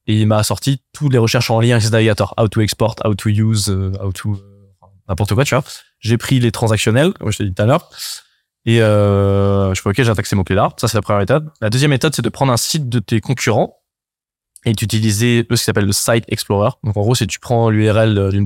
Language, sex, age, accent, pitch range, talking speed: French, male, 20-39, French, 105-125 Hz, 255 wpm